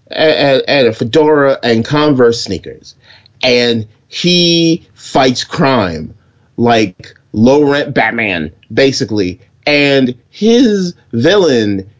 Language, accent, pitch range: English, American, 105-135 Hz